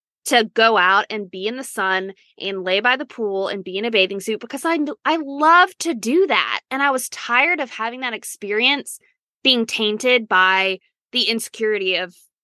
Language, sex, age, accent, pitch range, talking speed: English, female, 20-39, American, 195-260 Hz, 195 wpm